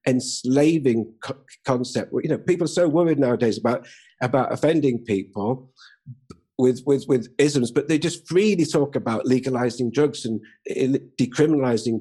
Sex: male